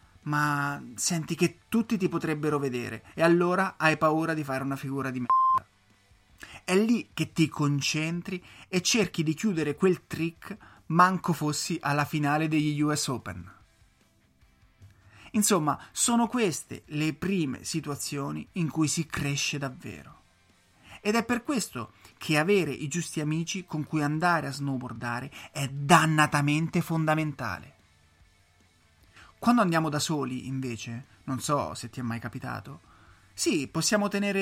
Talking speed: 135 wpm